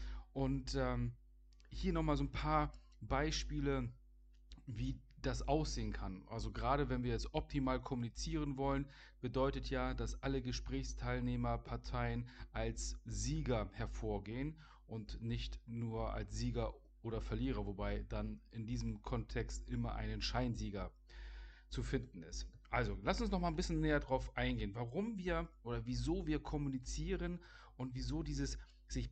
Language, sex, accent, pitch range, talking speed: German, male, German, 110-145 Hz, 135 wpm